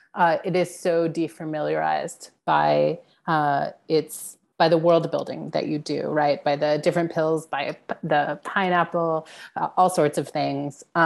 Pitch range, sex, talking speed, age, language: 155-180 Hz, female, 150 wpm, 30-49, English